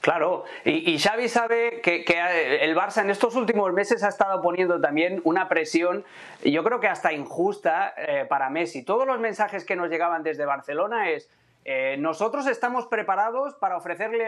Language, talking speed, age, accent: Spanish, 175 wpm, 30-49, Spanish